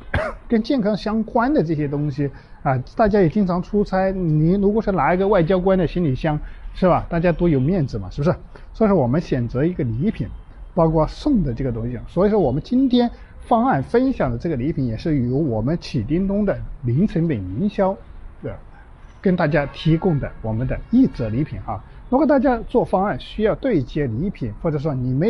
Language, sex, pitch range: Chinese, male, 125-190 Hz